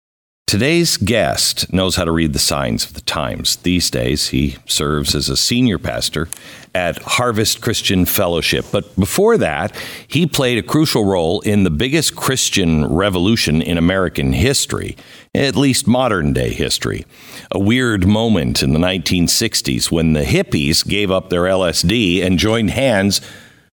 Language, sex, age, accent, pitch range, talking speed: English, male, 50-69, American, 75-110 Hz, 150 wpm